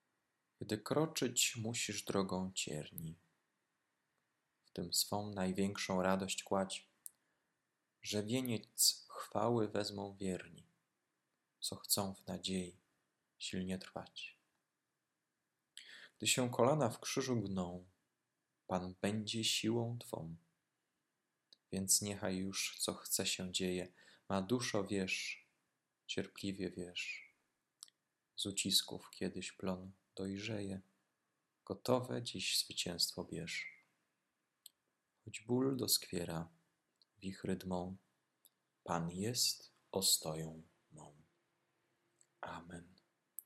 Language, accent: Polish, native